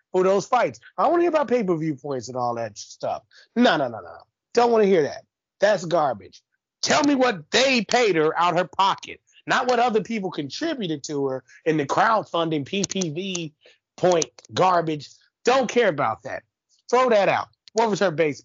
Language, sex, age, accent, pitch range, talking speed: English, male, 30-49, American, 130-195 Hz, 195 wpm